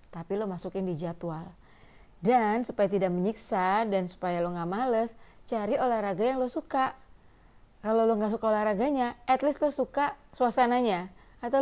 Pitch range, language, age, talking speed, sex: 180-225 Hz, Indonesian, 30-49, 155 wpm, female